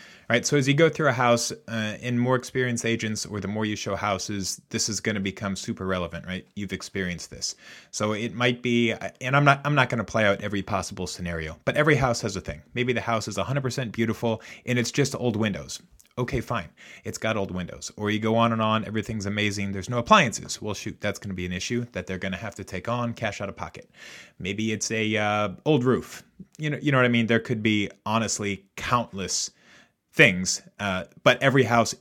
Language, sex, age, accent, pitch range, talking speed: English, male, 30-49, American, 100-125 Hz, 230 wpm